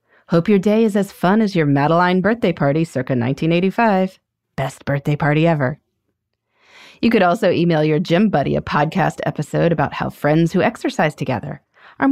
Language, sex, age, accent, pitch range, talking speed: English, female, 30-49, American, 140-230 Hz, 170 wpm